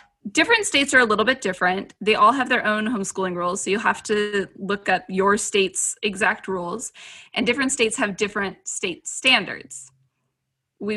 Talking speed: 175 wpm